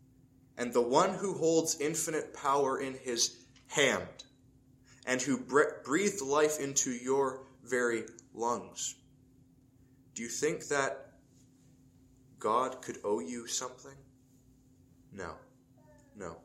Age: 20-39